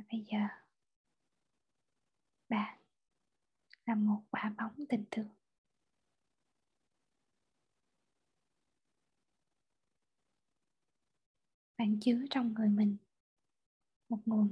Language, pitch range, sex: Vietnamese, 220-245 Hz, female